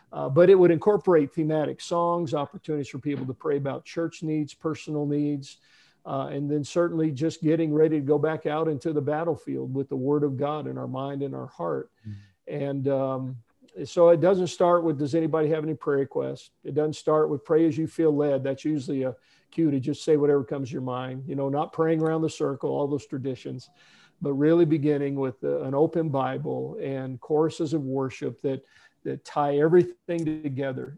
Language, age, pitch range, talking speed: English, 50-69, 140-170 Hz, 200 wpm